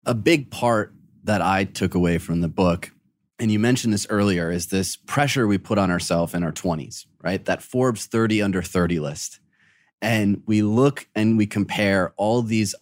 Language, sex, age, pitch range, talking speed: English, male, 30-49, 95-125 Hz, 185 wpm